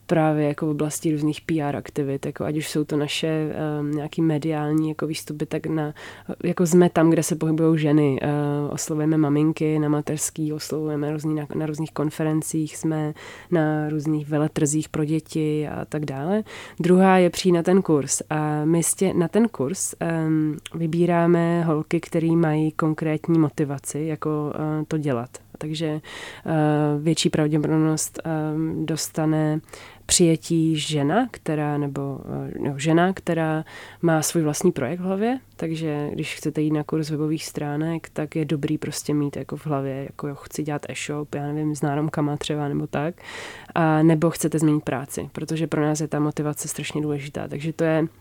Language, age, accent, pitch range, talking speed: Czech, 20-39, native, 150-160 Hz, 165 wpm